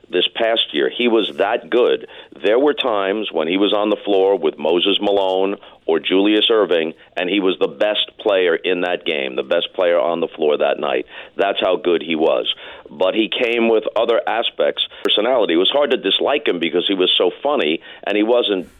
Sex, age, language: male, 50-69, English